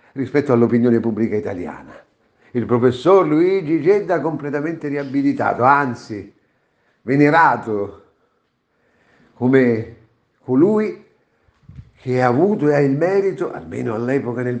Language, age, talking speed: Italian, 50-69, 105 wpm